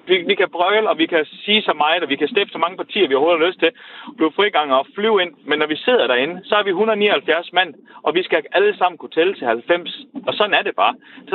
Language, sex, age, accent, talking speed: Danish, male, 30-49, native, 290 wpm